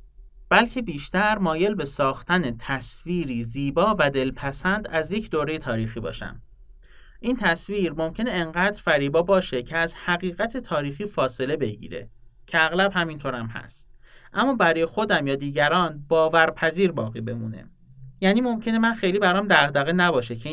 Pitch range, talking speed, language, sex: 125-180 Hz, 135 wpm, Persian, male